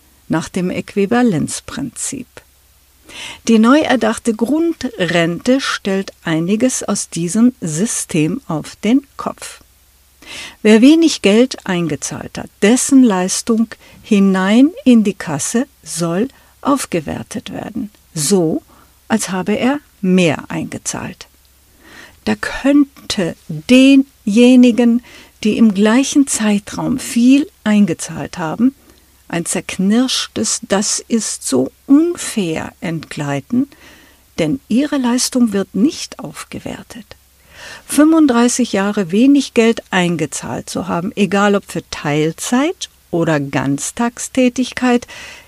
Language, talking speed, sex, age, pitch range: German, 95 wpm, female, 50-69, 180-255 Hz